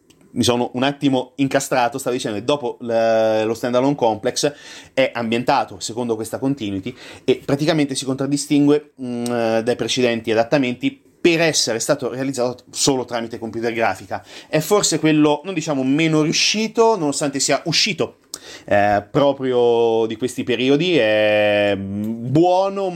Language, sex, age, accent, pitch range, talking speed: Italian, male, 30-49, native, 110-140 Hz, 135 wpm